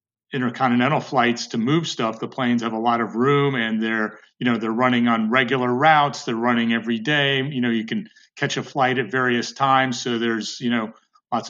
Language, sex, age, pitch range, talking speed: English, male, 40-59, 115-135 Hz, 210 wpm